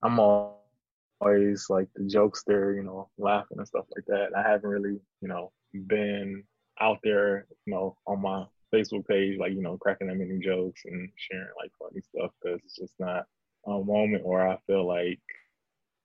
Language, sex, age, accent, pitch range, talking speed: English, male, 20-39, American, 95-105 Hz, 180 wpm